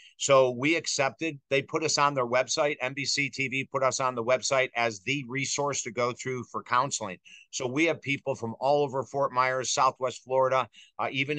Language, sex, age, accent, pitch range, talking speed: English, male, 50-69, American, 125-145 Hz, 195 wpm